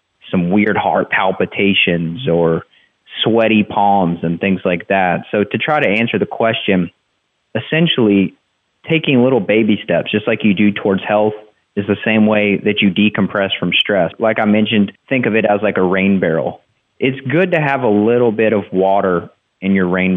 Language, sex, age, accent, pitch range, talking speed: English, male, 30-49, American, 95-120 Hz, 180 wpm